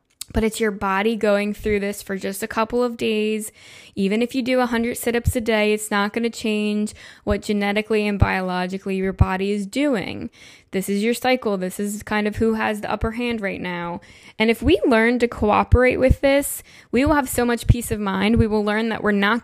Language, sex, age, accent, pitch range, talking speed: English, female, 10-29, American, 195-230 Hz, 220 wpm